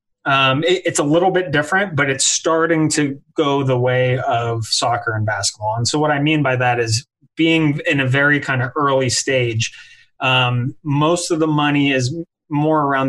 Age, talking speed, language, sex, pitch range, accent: 30-49, 195 wpm, English, male, 120-150 Hz, American